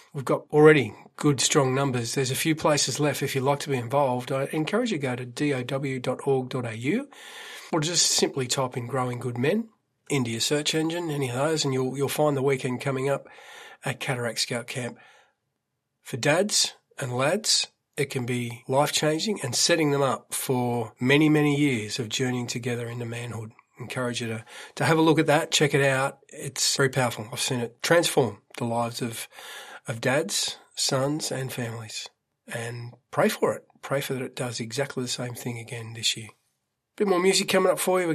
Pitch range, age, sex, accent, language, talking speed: 125-150 Hz, 40-59, male, Australian, English, 200 wpm